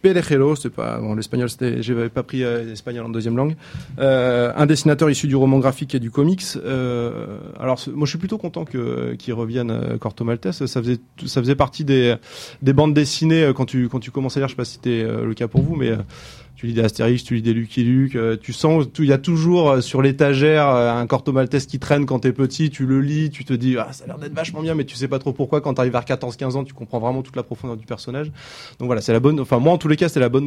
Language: French